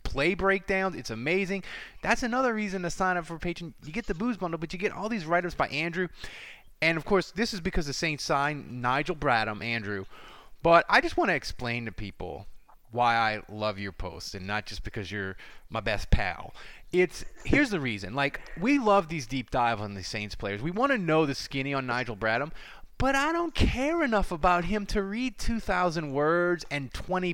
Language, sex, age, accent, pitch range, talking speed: English, male, 30-49, American, 135-200 Hz, 205 wpm